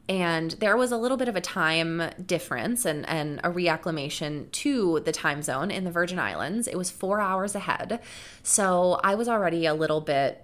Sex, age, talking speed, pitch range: female, 20-39, 195 wpm, 175-235 Hz